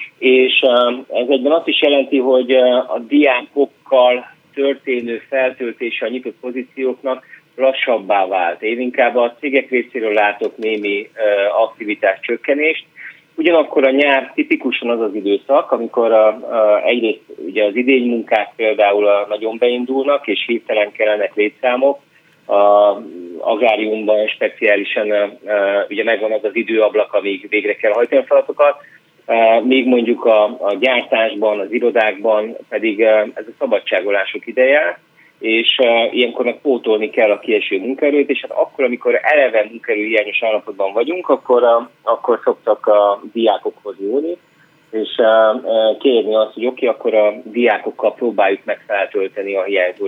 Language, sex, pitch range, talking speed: Hungarian, male, 110-140 Hz, 130 wpm